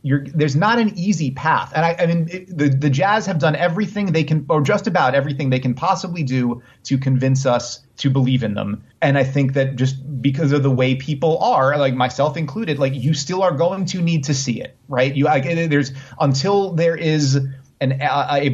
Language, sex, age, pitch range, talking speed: English, male, 30-49, 125-155 Hz, 220 wpm